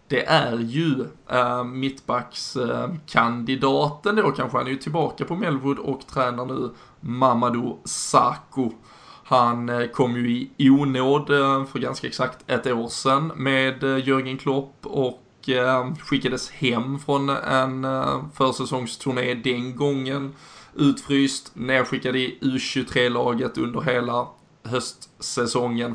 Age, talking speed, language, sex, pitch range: 20-39, 125 wpm, Swedish, male, 125-140 Hz